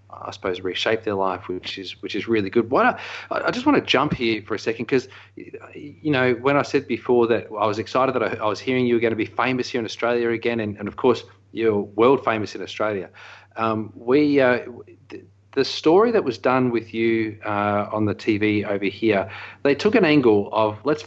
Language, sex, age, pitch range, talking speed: English, male, 40-59, 105-125 Hz, 230 wpm